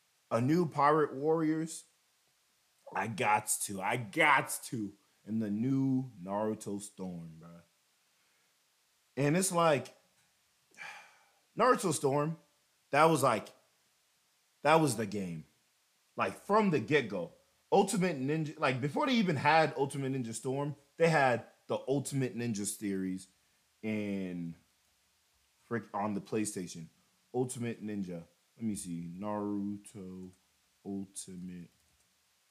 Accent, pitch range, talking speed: American, 90-135 Hz, 115 wpm